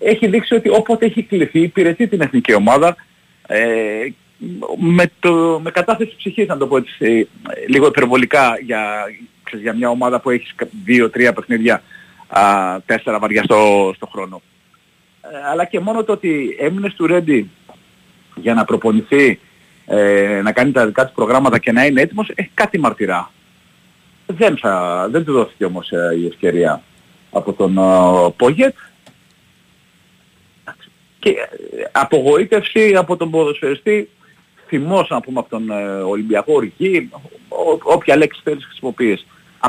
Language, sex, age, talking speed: Greek, male, 40-59, 140 wpm